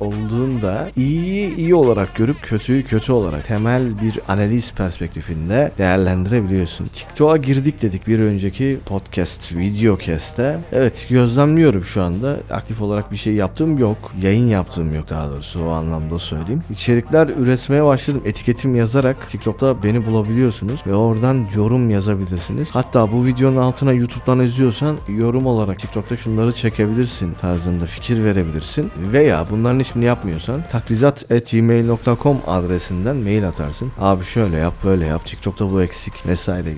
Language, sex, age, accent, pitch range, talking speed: Turkish, male, 40-59, native, 95-125 Hz, 135 wpm